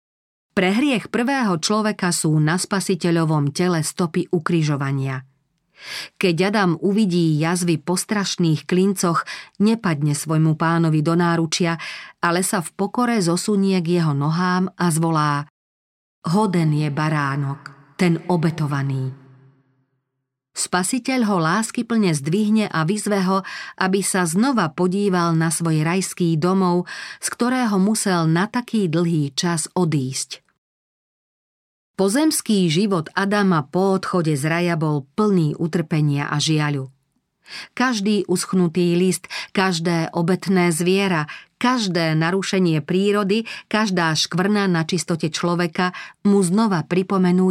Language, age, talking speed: Slovak, 40-59, 110 wpm